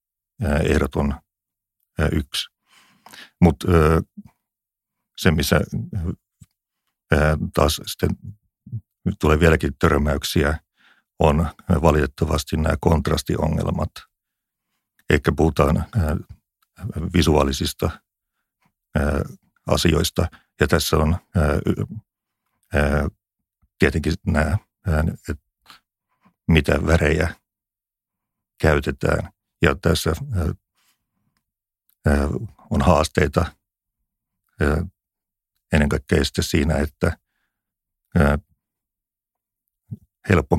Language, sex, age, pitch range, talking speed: Finnish, male, 50-69, 75-100 Hz, 60 wpm